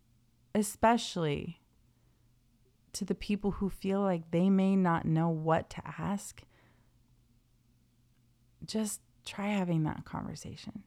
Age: 30-49